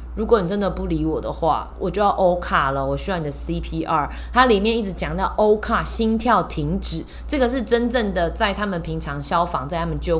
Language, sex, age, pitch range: Chinese, female, 20-39, 160-220 Hz